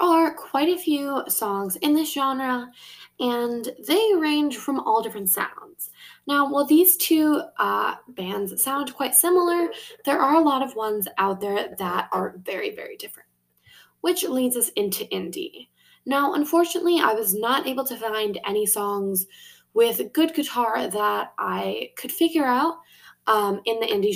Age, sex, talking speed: 10-29, female, 160 wpm